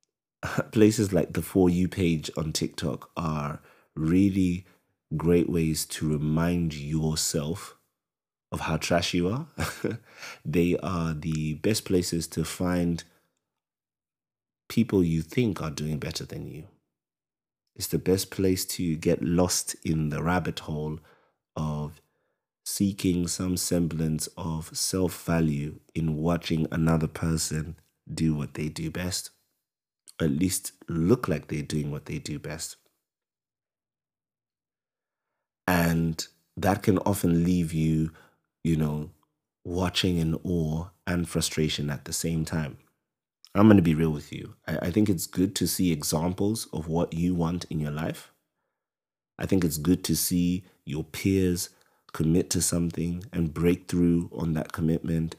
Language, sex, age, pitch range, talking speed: English, male, 30-49, 80-90 Hz, 140 wpm